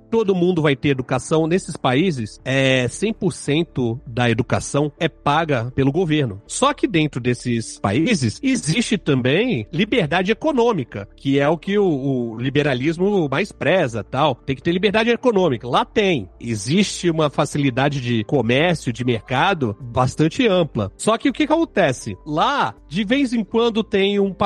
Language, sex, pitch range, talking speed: Portuguese, male, 135-215 Hz, 150 wpm